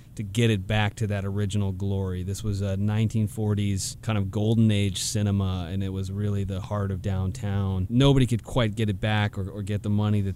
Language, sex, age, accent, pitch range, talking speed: English, male, 30-49, American, 100-115 Hz, 215 wpm